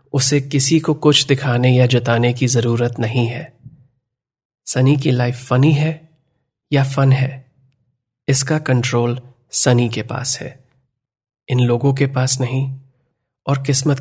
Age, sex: 30-49, male